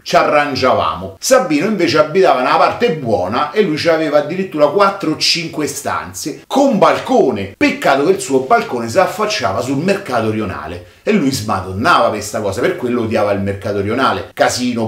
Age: 40-59